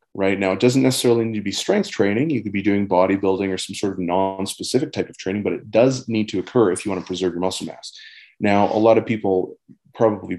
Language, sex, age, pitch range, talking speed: English, male, 30-49, 90-110 Hz, 250 wpm